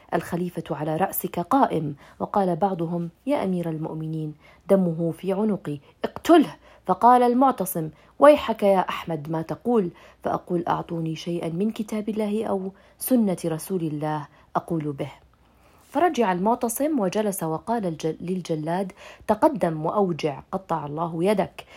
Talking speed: 115 wpm